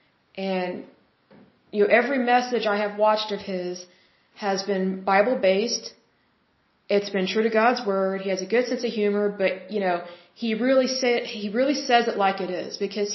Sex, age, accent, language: female, 30-49, American, Hindi